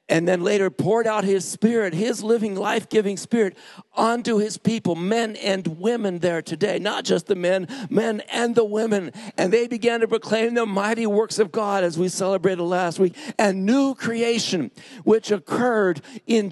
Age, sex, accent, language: 50-69, male, American, English